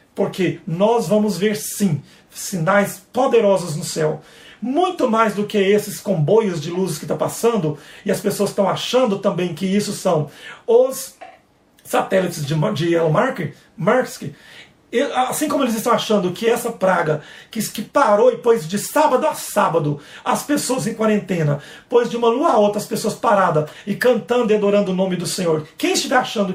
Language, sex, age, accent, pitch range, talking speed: Portuguese, male, 40-59, Brazilian, 185-245 Hz, 170 wpm